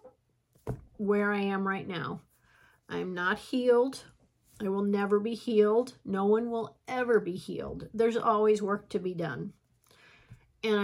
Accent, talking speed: American, 145 wpm